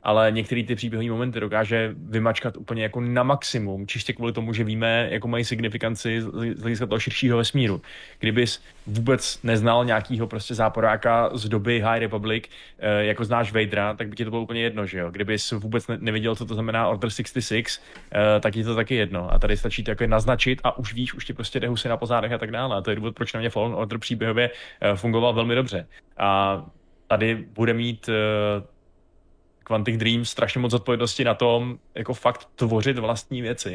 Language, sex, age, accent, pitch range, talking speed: Czech, male, 20-39, native, 105-120 Hz, 190 wpm